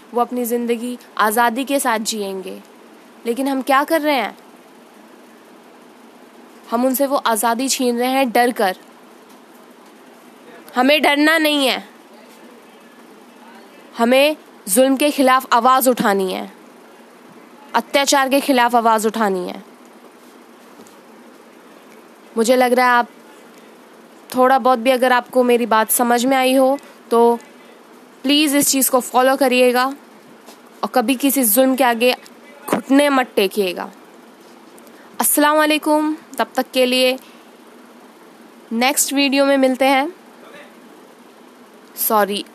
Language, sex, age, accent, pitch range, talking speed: English, female, 20-39, Indian, 230-270 Hz, 115 wpm